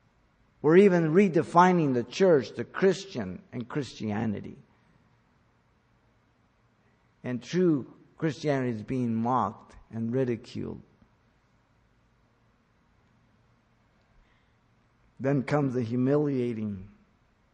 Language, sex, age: English, male, 50-69